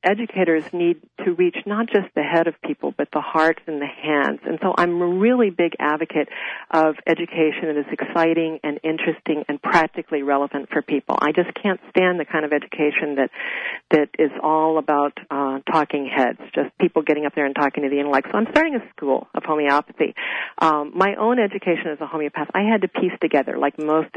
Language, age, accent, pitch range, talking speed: English, 50-69, American, 150-185 Hz, 205 wpm